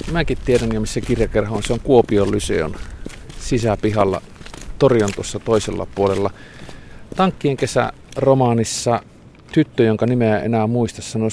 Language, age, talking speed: Finnish, 50-69, 120 wpm